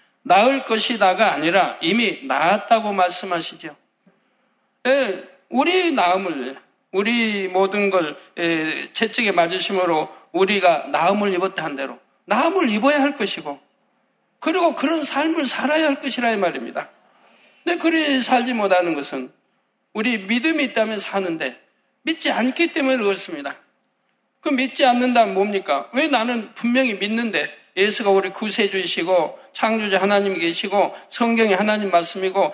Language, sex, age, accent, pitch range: Korean, male, 60-79, native, 195-260 Hz